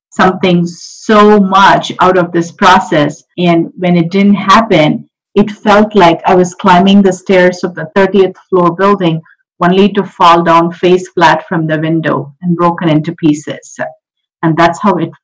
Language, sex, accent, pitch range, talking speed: English, female, Indian, 170-190 Hz, 165 wpm